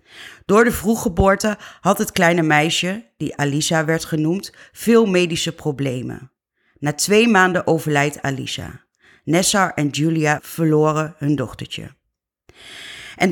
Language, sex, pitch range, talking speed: Dutch, female, 150-185 Hz, 115 wpm